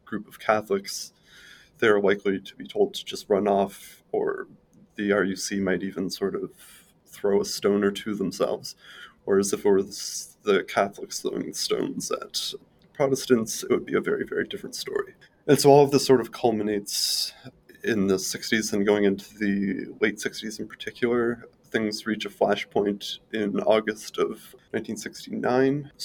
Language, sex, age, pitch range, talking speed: English, male, 20-39, 100-125 Hz, 165 wpm